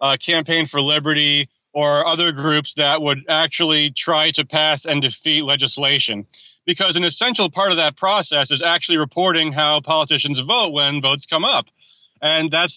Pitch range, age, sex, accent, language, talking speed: 145-165 Hz, 30-49, male, American, English, 165 wpm